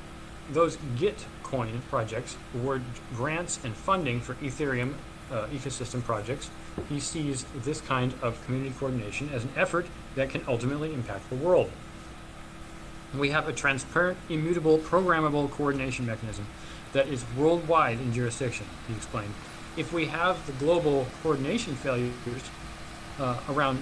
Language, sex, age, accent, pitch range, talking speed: English, male, 40-59, American, 120-155 Hz, 130 wpm